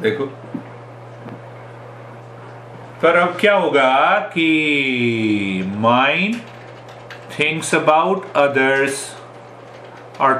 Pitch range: 115-140 Hz